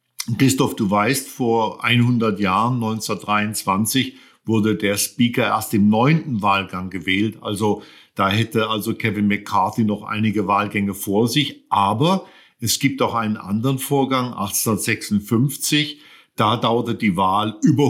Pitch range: 105-125 Hz